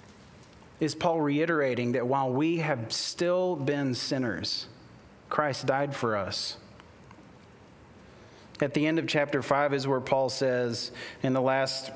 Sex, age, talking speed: male, 40-59, 135 wpm